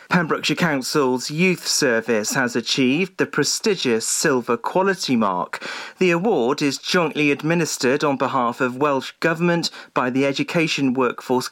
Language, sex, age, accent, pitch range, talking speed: English, male, 40-59, British, 130-170 Hz, 130 wpm